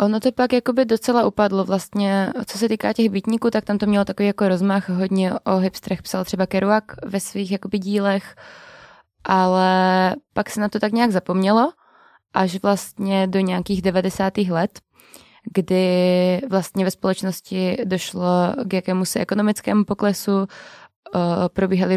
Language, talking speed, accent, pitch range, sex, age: Czech, 150 wpm, native, 185-205 Hz, female, 20-39